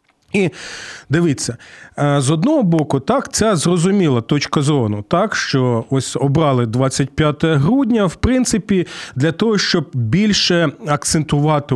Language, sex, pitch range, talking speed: Ukrainian, male, 130-175 Hz, 115 wpm